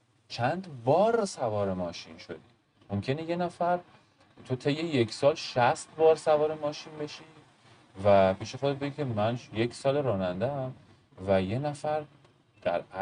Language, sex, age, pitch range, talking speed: Persian, male, 30-49, 95-140 Hz, 140 wpm